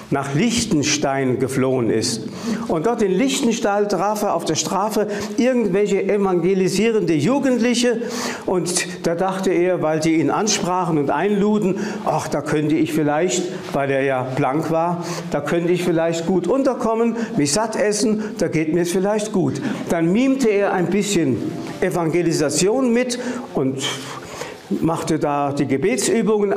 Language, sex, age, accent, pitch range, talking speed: German, male, 60-79, German, 150-200 Hz, 140 wpm